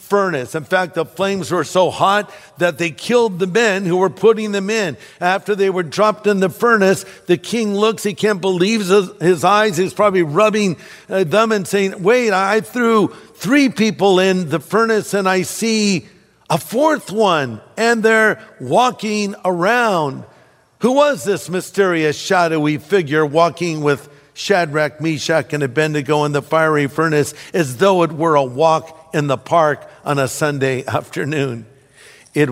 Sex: male